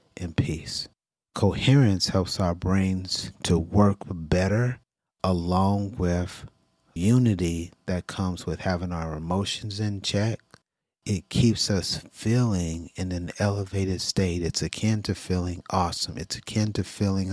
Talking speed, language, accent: 130 wpm, English, American